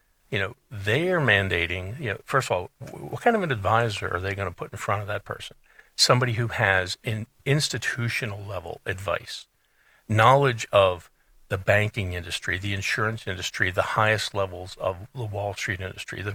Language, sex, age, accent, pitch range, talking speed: English, male, 60-79, American, 100-125 Hz, 180 wpm